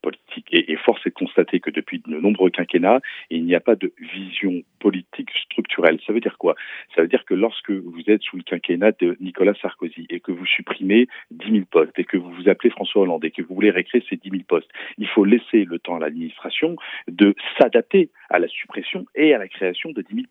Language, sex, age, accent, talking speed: Italian, male, 40-59, French, 230 wpm